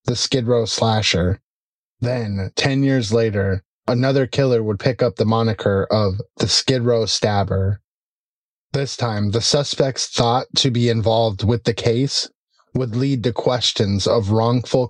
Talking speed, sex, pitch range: 150 wpm, male, 110-125 Hz